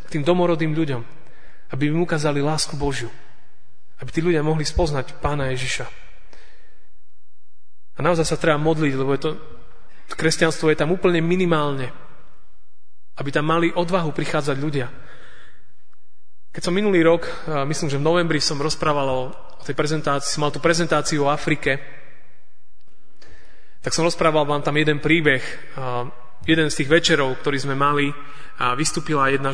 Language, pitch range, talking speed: Slovak, 140-170 Hz, 145 wpm